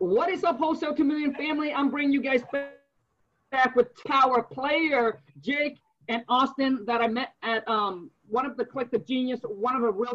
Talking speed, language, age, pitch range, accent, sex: 185 wpm, English, 40-59, 225-275 Hz, American, male